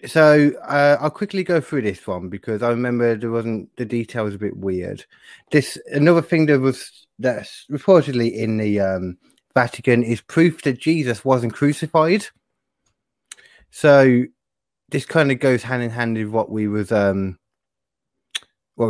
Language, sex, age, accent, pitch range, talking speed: English, male, 20-39, British, 110-145 Hz, 160 wpm